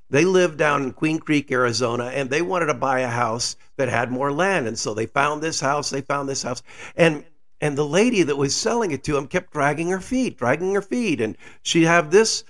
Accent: American